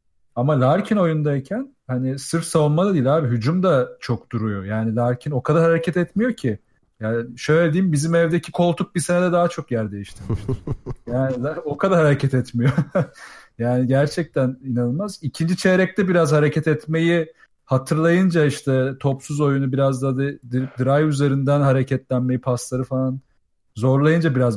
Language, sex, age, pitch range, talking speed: Turkish, male, 40-59, 130-165 Hz, 135 wpm